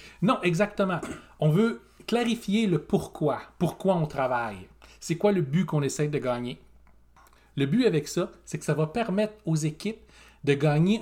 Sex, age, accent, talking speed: male, 40-59, Canadian, 170 wpm